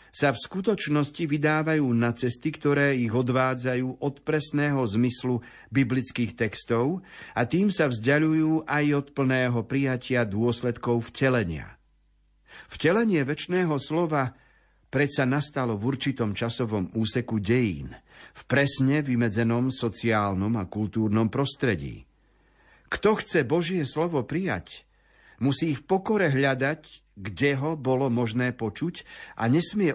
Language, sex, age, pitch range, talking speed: Slovak, male, 50-69, 115-150 Hz, 115 wpm